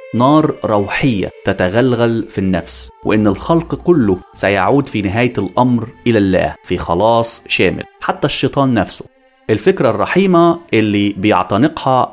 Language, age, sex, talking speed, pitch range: Arabic, 30-49, male, 120 wpm, 100-165 Hz